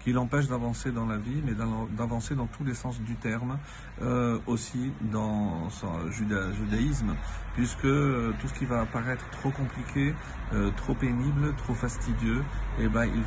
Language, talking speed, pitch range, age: French, 160 wpm, 110-140 Hz, 50-69